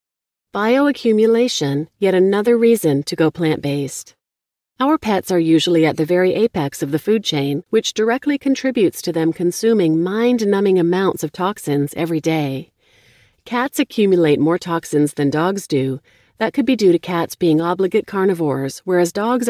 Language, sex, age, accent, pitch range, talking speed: English, female, 40-59, American, 160-220 Hz, 150 wpm